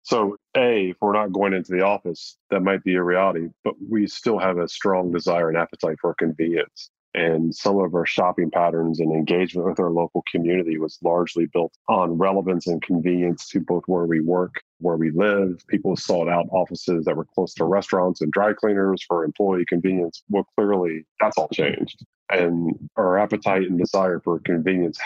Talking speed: 190 wpm